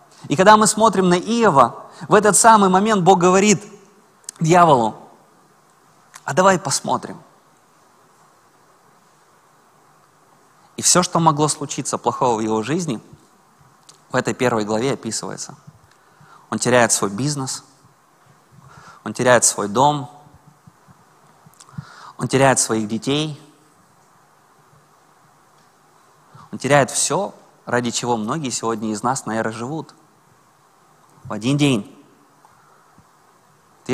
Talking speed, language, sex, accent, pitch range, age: 100 wpm, Russian, male, native, 115-155 Hz, 20-39